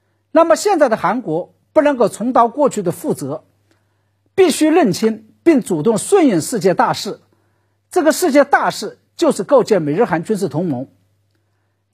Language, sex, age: Chinese, male, 50-69